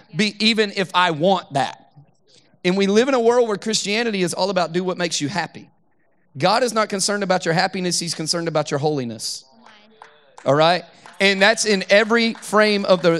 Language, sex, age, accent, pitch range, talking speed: English, male, 30-49, American, 155-205 Hz, 195 wpm